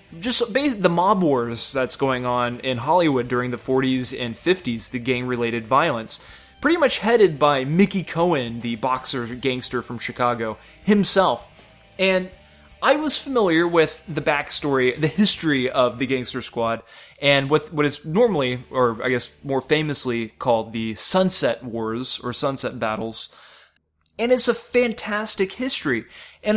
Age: 20-39